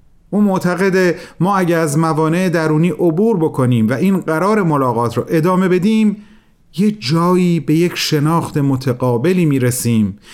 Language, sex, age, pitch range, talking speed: Persian, male, 40-59, 125-180 Hz, 135 wpm